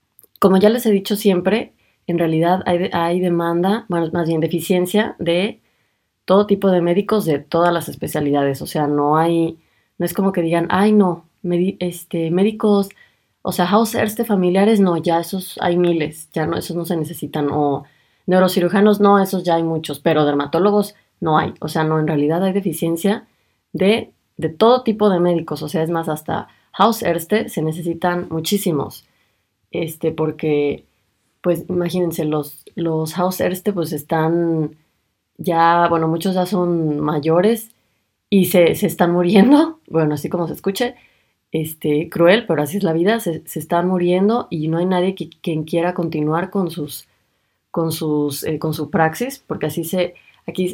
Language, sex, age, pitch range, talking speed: Spanish, female, 20-39, 155-195 Hz, 175 wpm